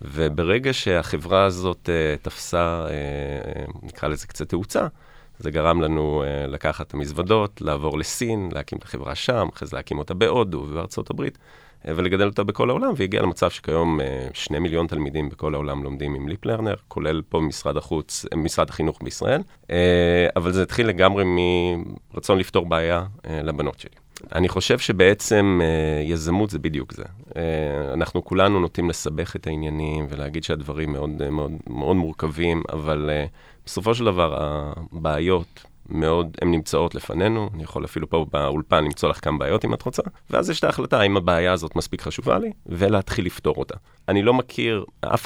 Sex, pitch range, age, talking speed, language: male, 75-95 Hz, 30-49, 150 wpm, Hebrew